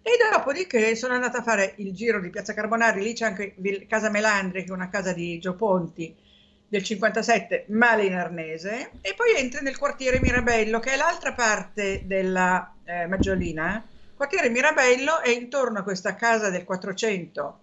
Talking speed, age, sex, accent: 170 wpm, 50-69, female, native